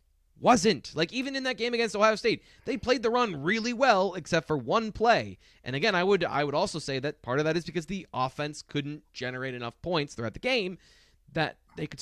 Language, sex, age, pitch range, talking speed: English, male, 30-49, 120-170 Hz, 225 wpm